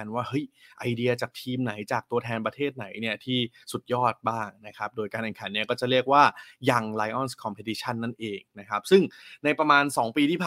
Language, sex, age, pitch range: Thai, male, 20-39, 110-130 Hz